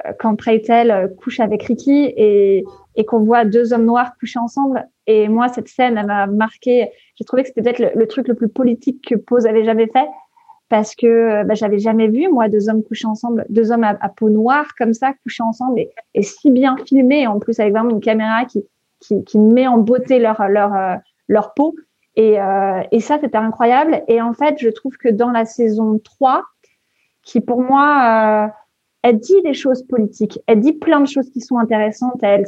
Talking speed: 210 wpm